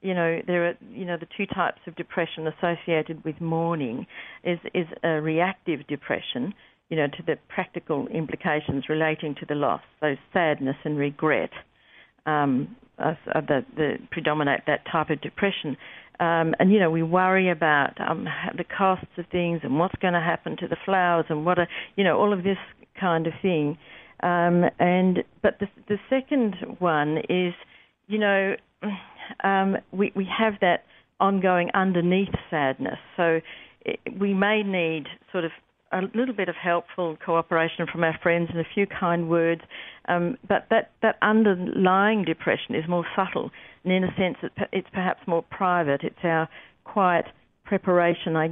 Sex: female